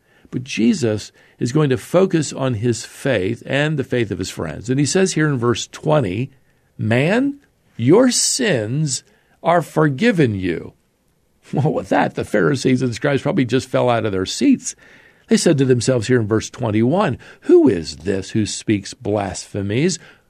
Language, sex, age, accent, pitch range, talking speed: English, male, 50-69, American, 100-145 Hz, 165 wpm